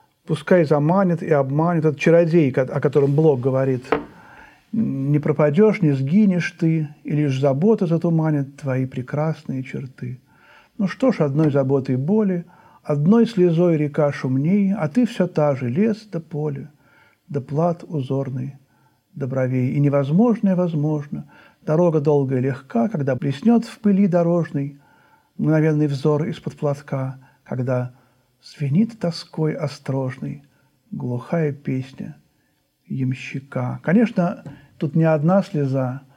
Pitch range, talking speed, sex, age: 135-170 Hz, 125 wpm, male, 50-69